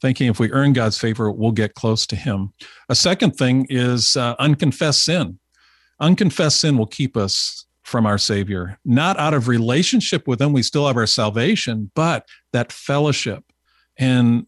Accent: American